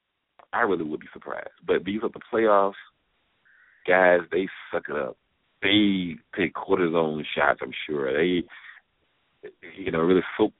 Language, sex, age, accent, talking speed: English, male, 50-69, American, 155 wpm